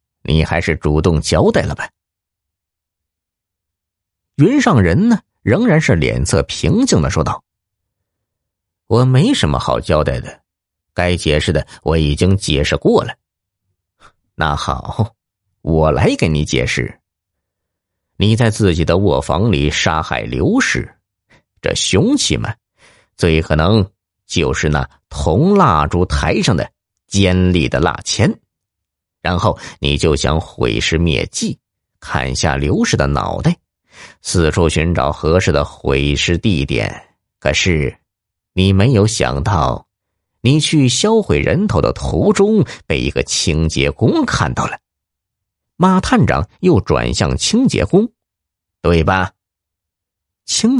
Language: Chinese